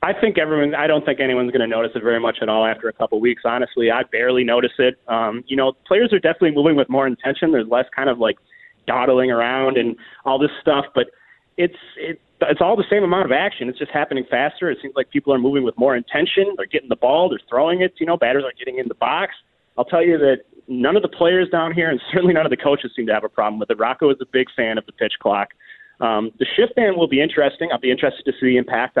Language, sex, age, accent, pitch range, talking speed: English, male, 30-49, American, 120-160 Hz, 265 wpm